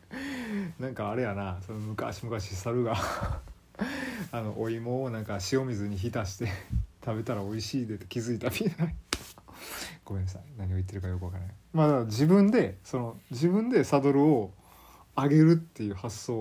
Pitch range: 95-130 Hz